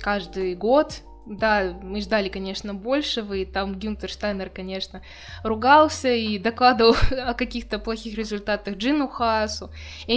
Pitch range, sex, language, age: 185-235 Hz, female, Russian, 20-39